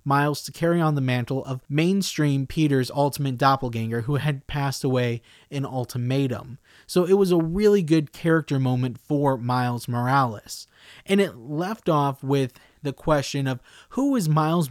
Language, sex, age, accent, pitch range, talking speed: English, male, 20-39, American, 135-170 Hz, 160 wpm